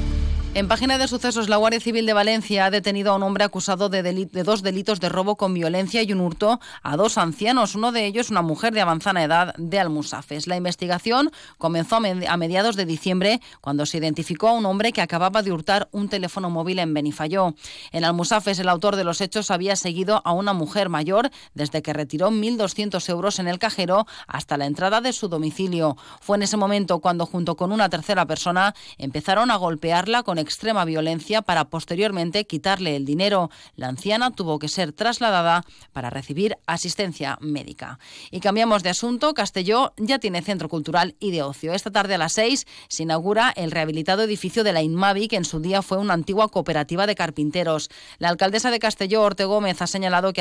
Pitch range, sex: 165-210 Hz, female